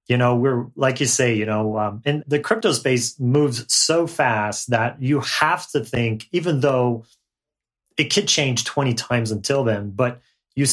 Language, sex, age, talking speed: English, male, 30-49, 180 wpm